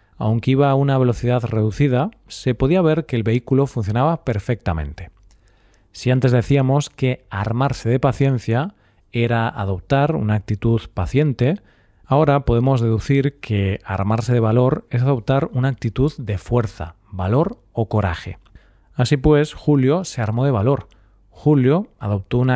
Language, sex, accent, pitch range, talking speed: Spanish, male, Spanish, 105-135 Hz, 140 wpm